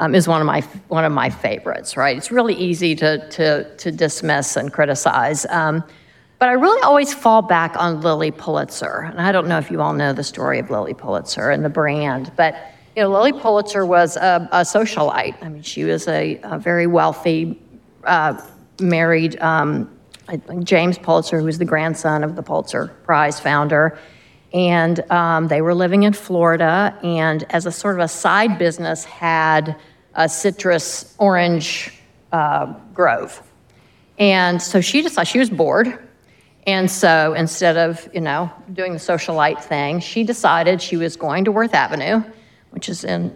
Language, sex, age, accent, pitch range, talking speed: English, female, 50-69, American, 160-195 Hz, 175 wpm